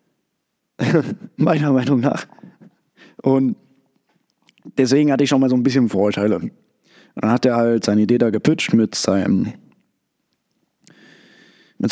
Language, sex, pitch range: German, male, 115-140 Hz